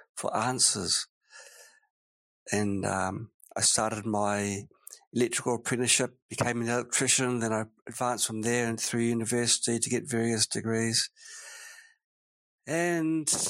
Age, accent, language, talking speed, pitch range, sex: 50-69, British, English, 110 wpm, 115-140 Hz, male